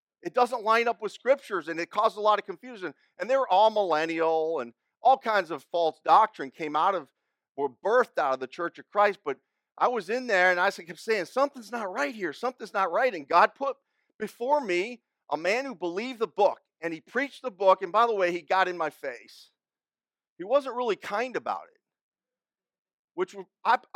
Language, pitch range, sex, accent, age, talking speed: English, 185-255 Hz, male, American, 40-59, 210 wpm